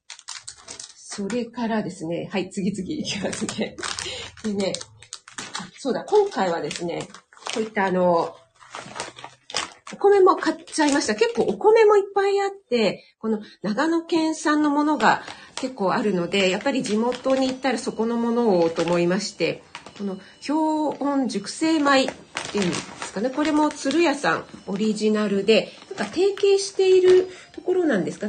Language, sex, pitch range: Japanese, female, 195-310 Hz